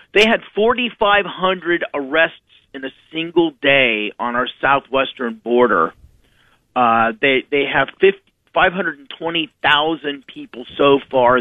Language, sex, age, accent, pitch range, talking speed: English, male, 40-59, American, 125-150 Hz, 105 wpm